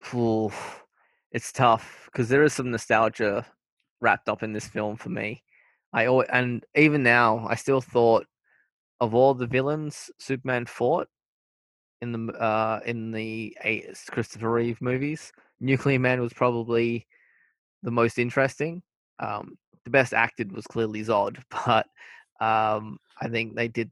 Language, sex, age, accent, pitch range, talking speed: English, male, 20-39, Australian, 110-125 Hz, 140 wpm